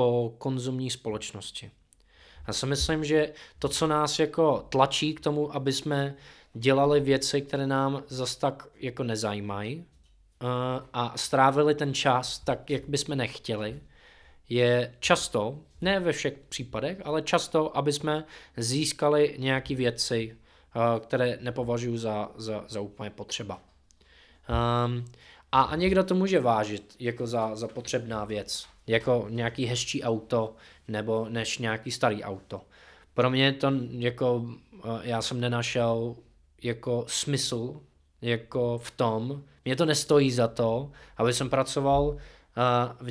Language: Czech